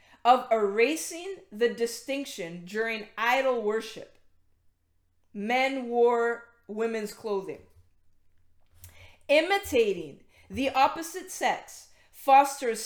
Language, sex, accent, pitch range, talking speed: English, female, American, 180-265 Hz, 75 wpm